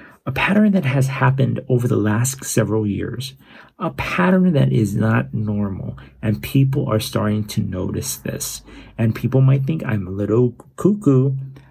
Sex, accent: male, American